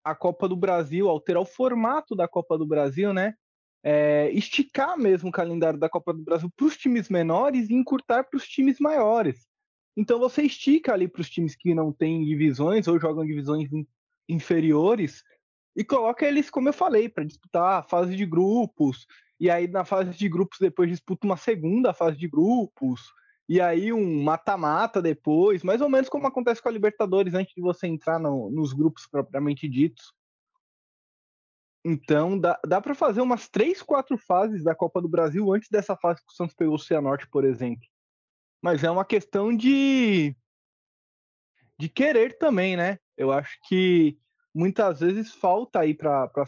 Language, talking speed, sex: Portuguese, 175 wpm, male